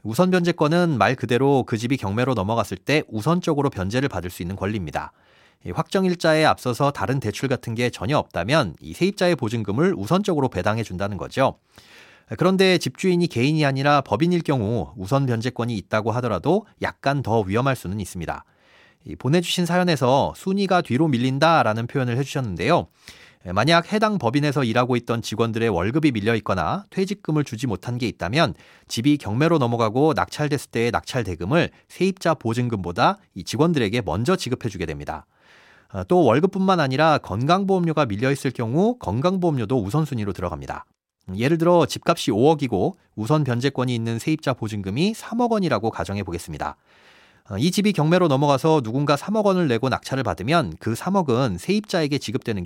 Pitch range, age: 110-165 Hz, 30-49